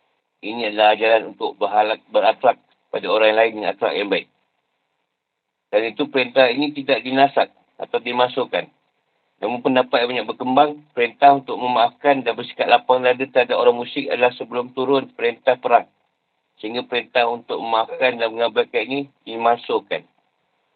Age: 50-69